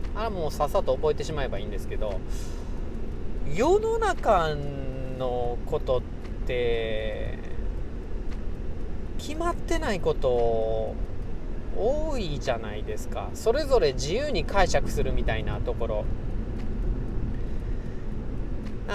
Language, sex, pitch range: Japanese, male, 100-135 Hz